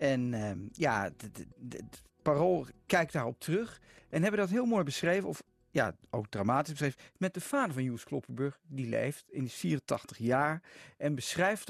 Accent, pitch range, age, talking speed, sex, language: Dutch, 125-170 Hz, 40-59, 185 wpm, male, Dutch